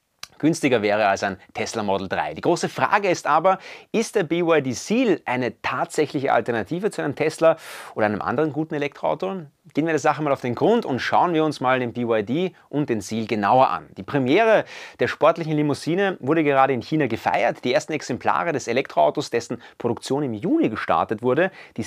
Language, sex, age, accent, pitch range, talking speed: German, male, 30-49, German, 115-160 Hz, 190 wpm